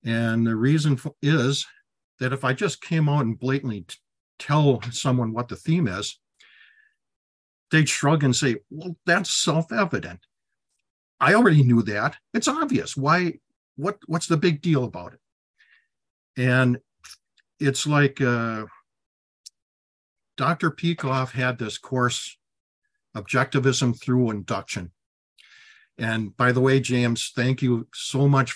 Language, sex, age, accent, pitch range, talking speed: English, male, 50-69, American, 115-155 Hz, 125 wpm